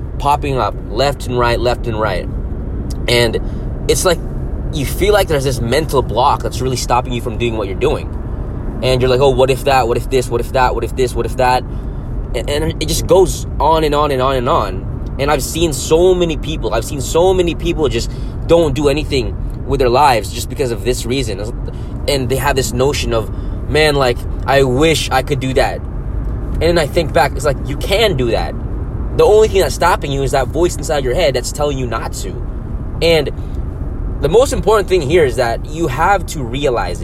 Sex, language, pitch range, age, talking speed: male, English, 115-145 Hz, 20-39, 215 wpm